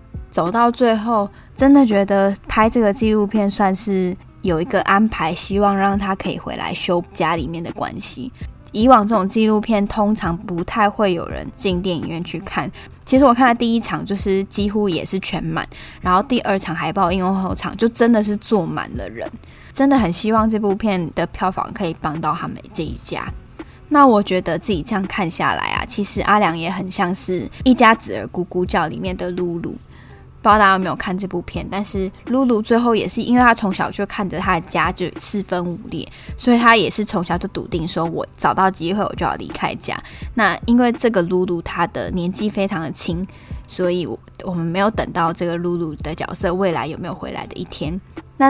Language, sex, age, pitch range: Chinese, female, 10-29, 180-220 Hz